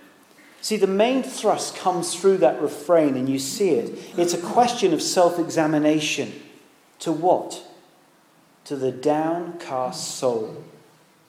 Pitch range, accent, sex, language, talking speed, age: 150-220 Hz, British, male, English, 130 wpm, 40-59